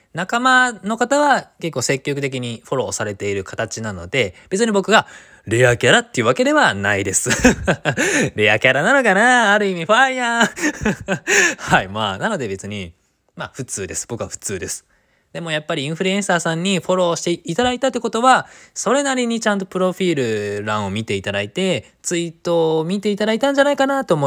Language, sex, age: Japanese, male, 20-39